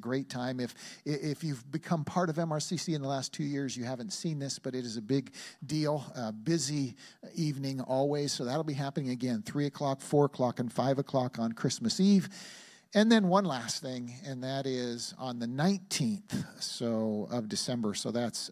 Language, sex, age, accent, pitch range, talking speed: English, male, 50-69, American, 120-165 Hz, 190 wpm